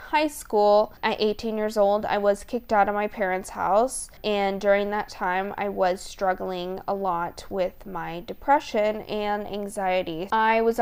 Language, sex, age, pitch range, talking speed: English, female, 20-39, 195-220 Hz, 165 wpm